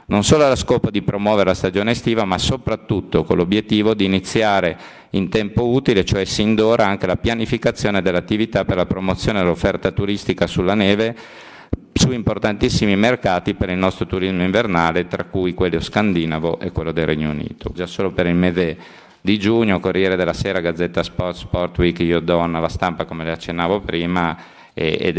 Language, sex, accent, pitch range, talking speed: Italian, male, native, 85-100 Hz, 170 wpm